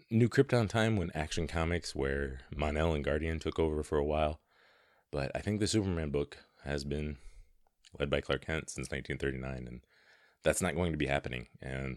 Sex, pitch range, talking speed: male, 65-85 Hz, 185 wpm